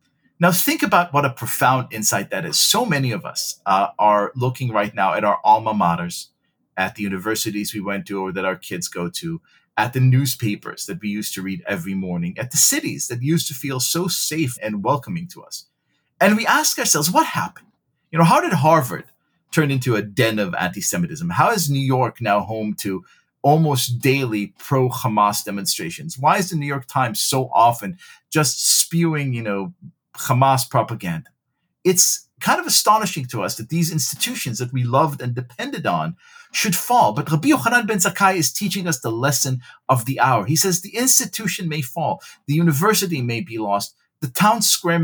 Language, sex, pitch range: English, male, 115-170 Hz